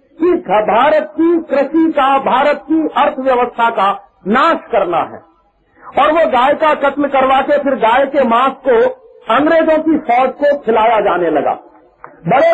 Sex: male